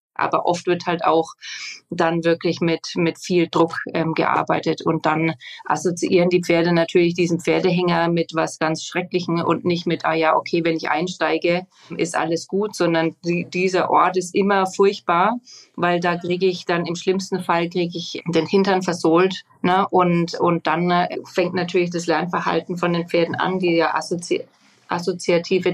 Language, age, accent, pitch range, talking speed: German, 30-49, German, 165-185 Hz, 175 wpm